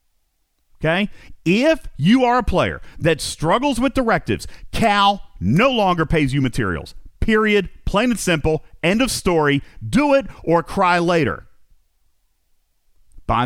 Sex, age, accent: male, 40-59, American